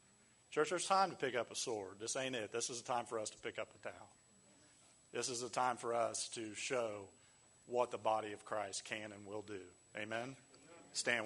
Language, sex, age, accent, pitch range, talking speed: English, male, 40-59, American, 110-125 Hz, 220 wpm